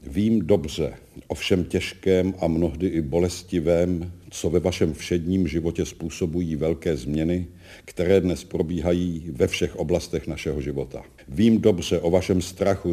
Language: Czech